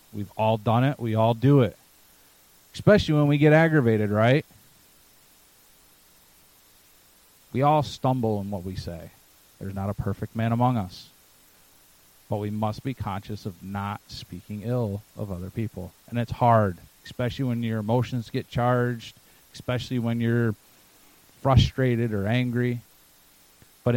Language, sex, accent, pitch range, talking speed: English, male, American, 100-125 Hz, 140 wpm